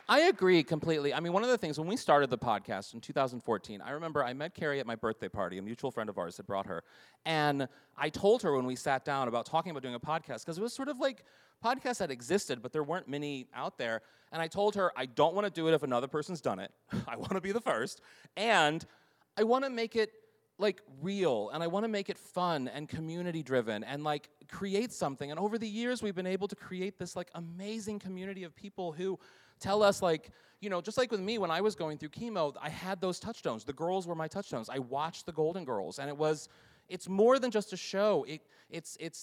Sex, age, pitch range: male, 30-49, 145-200 Hz